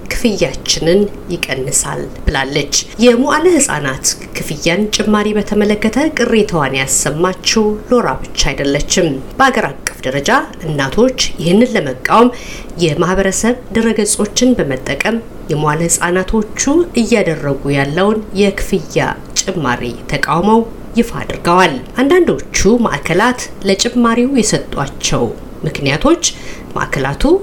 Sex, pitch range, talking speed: female, 170-235 Hz, 80 wpm